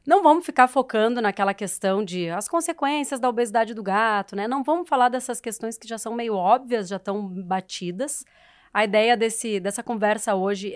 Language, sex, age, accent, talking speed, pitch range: Portuguese, female, 30-49, Brazilian, 180 wpm, 195-245 Hz